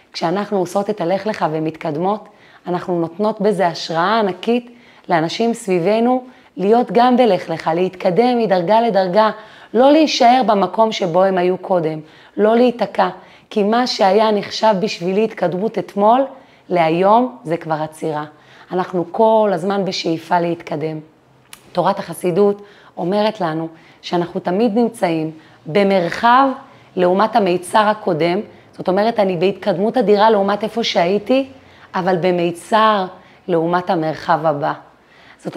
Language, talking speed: Hebrew, 120 wpm